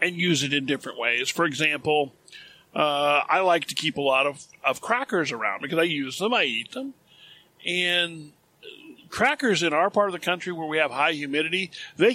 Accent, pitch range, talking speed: American, 155-210 Hz, 200 wpm